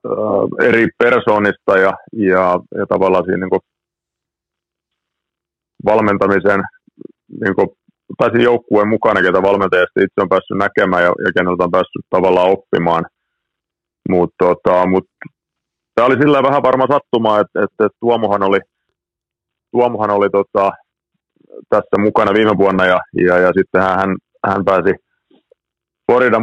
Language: Finnish